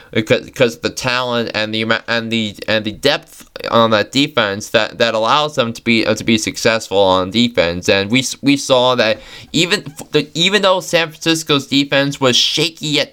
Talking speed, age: 190 wpm, 20-39